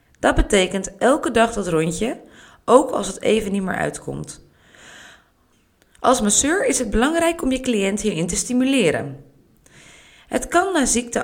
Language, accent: Dutch, Dutch